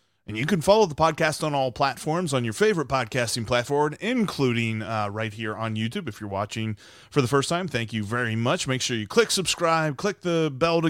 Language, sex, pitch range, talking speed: English, male, 115-160 Hz, 220 wpm